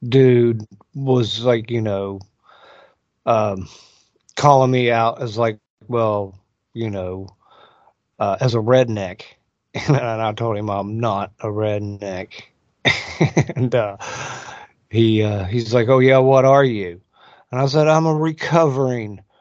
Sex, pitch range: male, 105-135 Hz